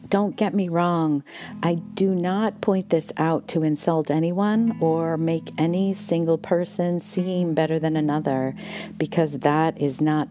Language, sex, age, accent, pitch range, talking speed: English, female, 40-59, American, 140-190 Hz, 150 wpm